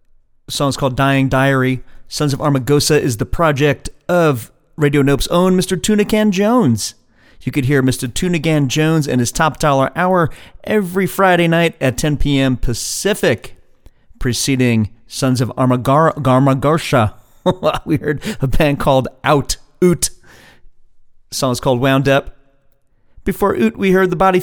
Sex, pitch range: male, 130-160 Hz